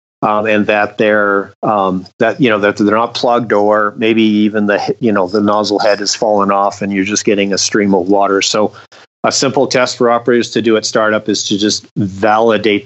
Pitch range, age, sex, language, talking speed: 100-115 Hz, 40-59, male, English, 215 wpm